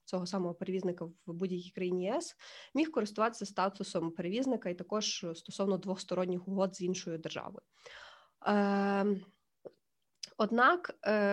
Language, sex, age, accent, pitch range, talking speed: Ukrainian, female, 20-39, native, 185-220 Hz, 105 wpm